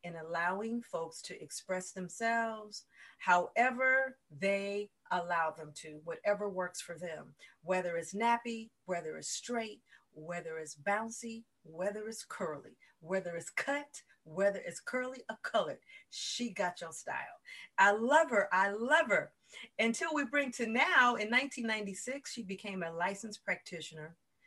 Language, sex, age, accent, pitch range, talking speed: English, female, 40-59, American, 175-230 Hz, 140 wpm